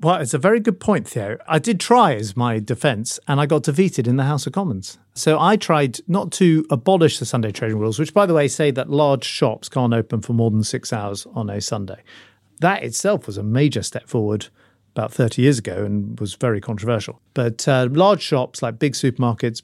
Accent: British